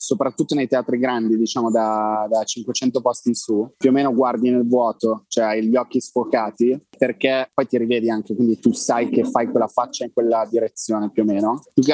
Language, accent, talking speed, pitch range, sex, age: Italian, native, 210 wpm, 110-130 Hz, male, 20-39